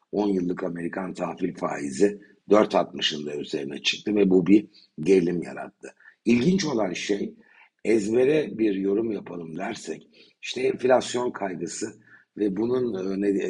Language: Turkish